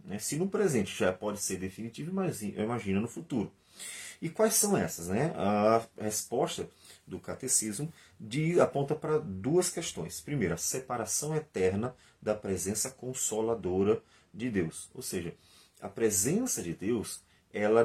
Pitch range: 95-130 Hz